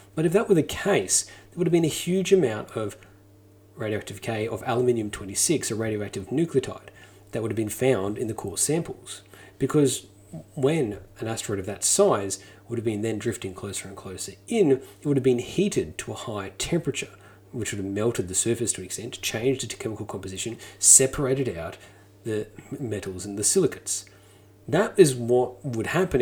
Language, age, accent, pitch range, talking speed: English, 30-49, Australian, 100-130 Hz, 185 wpm